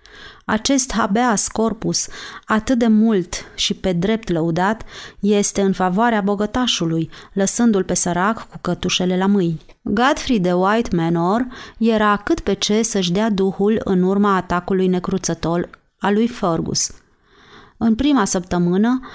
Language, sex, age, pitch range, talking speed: Romanian, female, 30-49, 185-225 Hz, 130 wpm